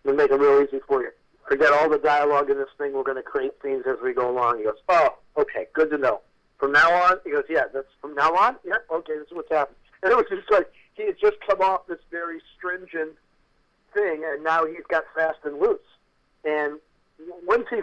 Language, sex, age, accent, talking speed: English, male, 50-69, American, 235 wpm